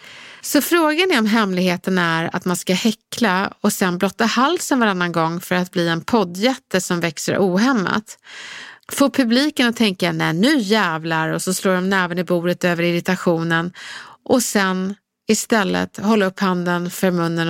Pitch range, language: 175-225 Hz, English